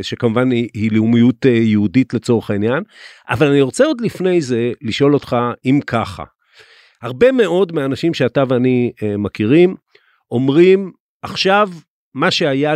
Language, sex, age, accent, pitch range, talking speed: Hebrew, male, 50-69, native, 115-155 Hz, 125 wpm